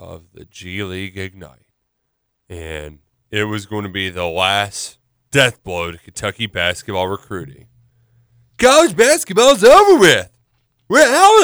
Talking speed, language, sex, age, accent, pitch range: 130 wpm, English, male, 30-49, American, 95-130 Hz